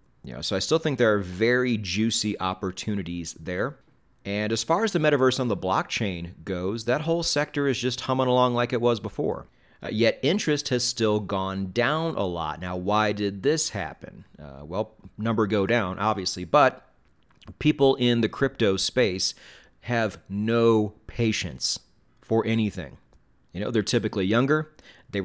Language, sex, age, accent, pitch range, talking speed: English, male, 30-49, American, 95-125 Hz, 160 wpm